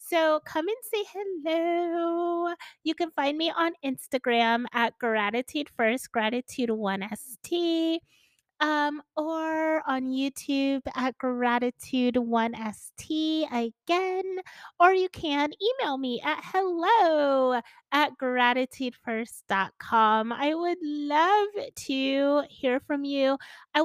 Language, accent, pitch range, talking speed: English, American, 245-315 Hz, 100 wpm